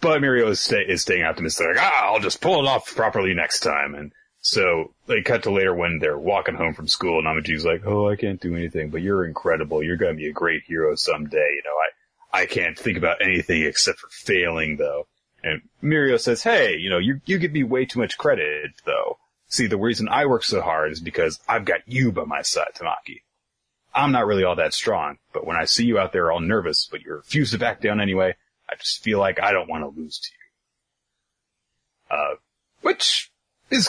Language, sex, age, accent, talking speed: English, male, 30-49, American, 225 wpm